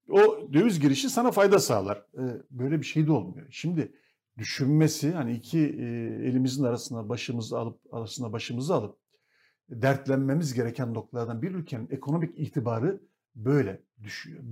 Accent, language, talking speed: native, Turkish, 130 wpm